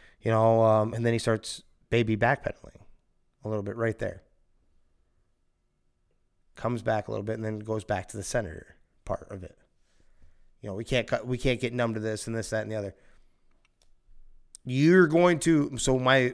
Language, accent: English, American